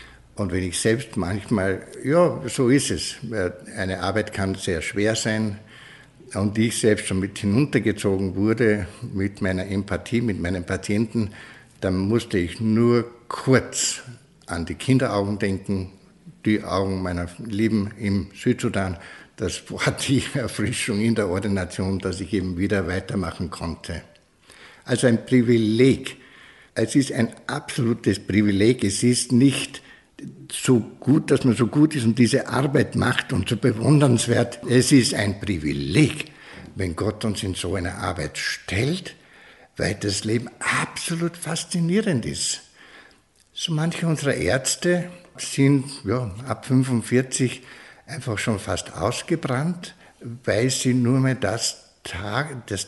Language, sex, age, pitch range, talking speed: German, male, 60-79, 100-130 Hz, 130 wpm